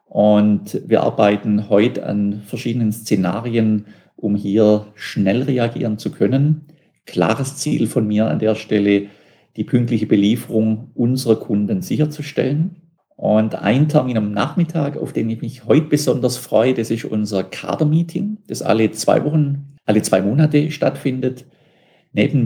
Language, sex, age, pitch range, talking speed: German, male, 50-69, 110-145 Hz, 135 wpm